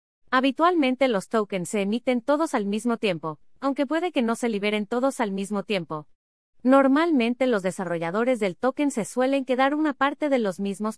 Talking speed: 175 wpm